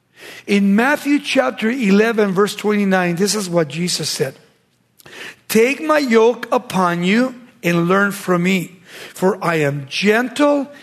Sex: male